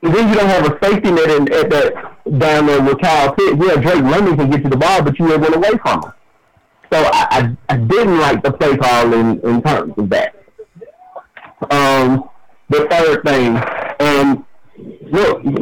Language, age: English, 50-69